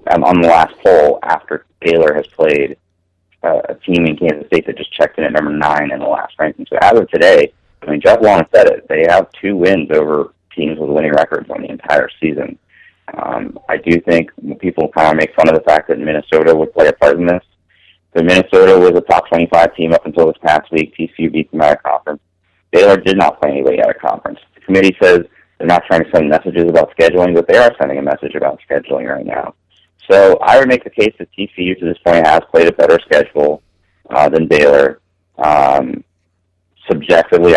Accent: American